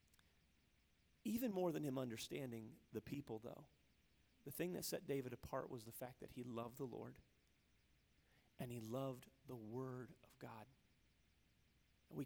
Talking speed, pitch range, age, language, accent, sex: 145 wpm, 110-145 Hz, 30-49, English, American, male